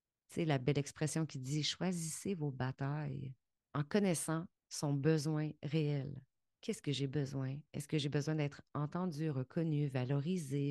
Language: French